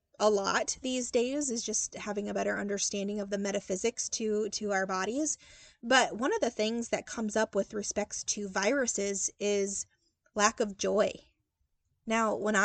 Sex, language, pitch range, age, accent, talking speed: female, English, 205-255 Hz, 20-39, American, 165 wpm